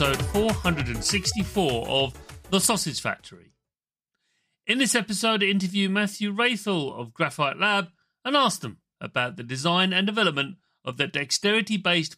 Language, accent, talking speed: English, British, 135 wpm